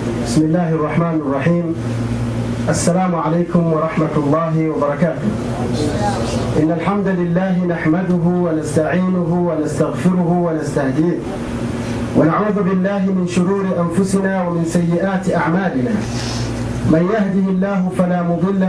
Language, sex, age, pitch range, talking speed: Swahili, male, 50-69, 160-200 Hz, 95 wpm